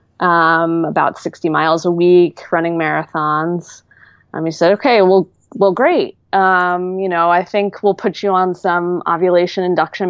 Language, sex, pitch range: English, female, 165-195 Hz